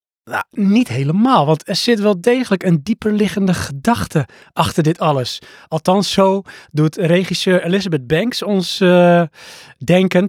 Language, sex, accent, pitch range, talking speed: Dutch, male, Dutch, 140-185 Hz, 130 wpm